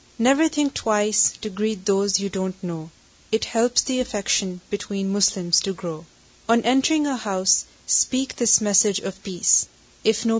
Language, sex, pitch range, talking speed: Urdu, female, 195-235 Hz, 160 wpm